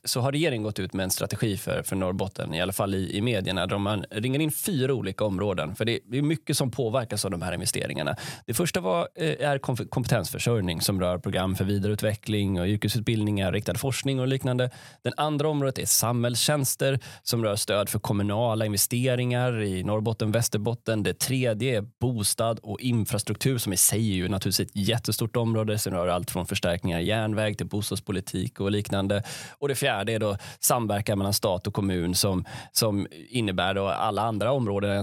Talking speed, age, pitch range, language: 185 wpm, 20-39, 100-125 Hz, Swedish